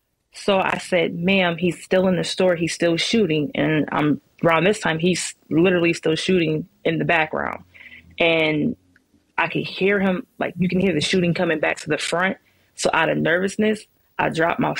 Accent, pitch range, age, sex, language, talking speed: American, 155-190 Hz, 20-39, female, English, 190 wpm